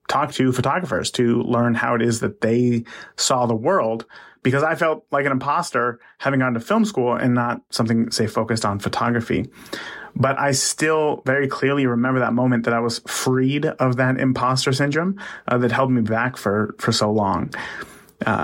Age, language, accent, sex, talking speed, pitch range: 30-49, English, American, male, 185 wpm, 115-130 Hz